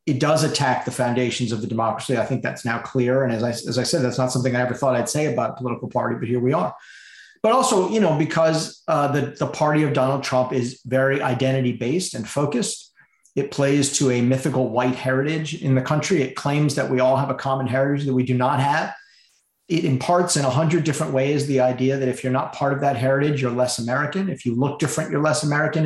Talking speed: 240 wpm